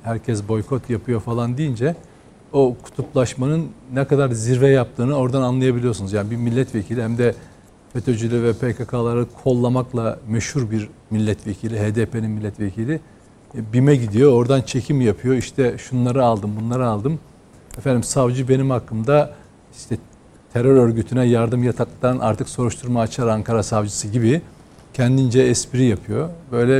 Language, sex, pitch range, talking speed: Turkish, male, 115-140 Hz, 125 wpm